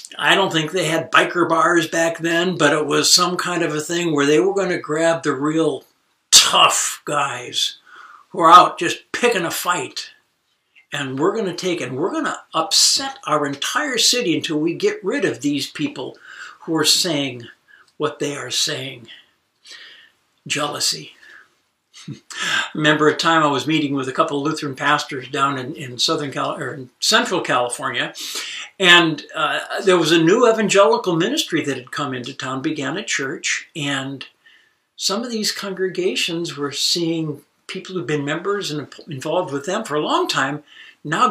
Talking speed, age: 175 wpm, 60-79